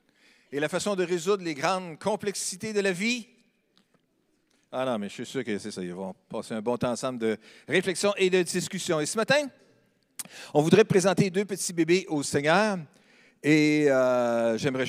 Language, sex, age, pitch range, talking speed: French, male, 50-69, 135-205 Hz, 185 wpm